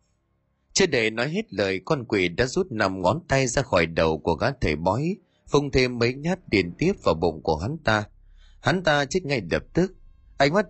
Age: 30-49